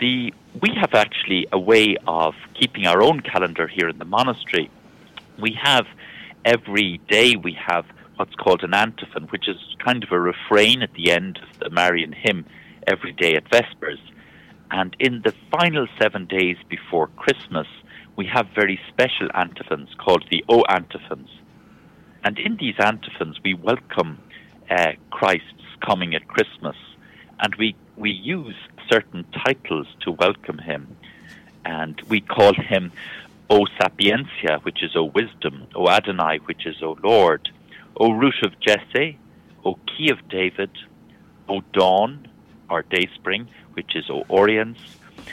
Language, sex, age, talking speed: English, male, 50-69, 145 wpm